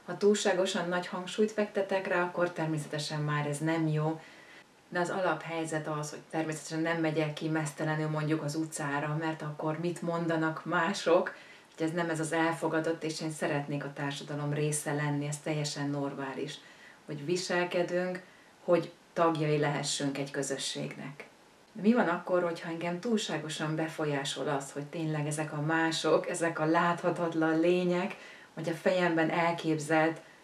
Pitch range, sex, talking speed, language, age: 150-175 Hz, female, 150 wpm, Hungarian, 30-49